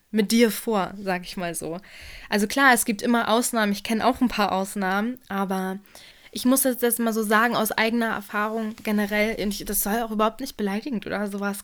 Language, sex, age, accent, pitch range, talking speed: German, female, 20-39, German, 210-235 Hz, 205 wpm